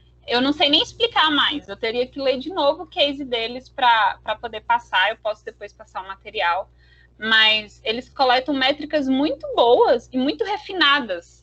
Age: 10-29